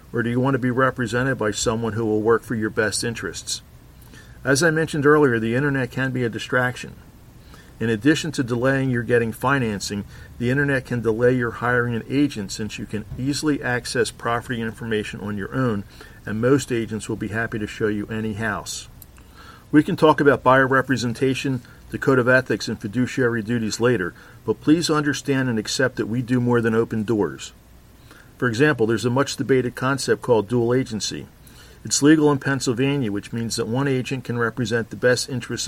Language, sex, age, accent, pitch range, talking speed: English, male, 50-69, American, 110-135 Hz, 185 wpm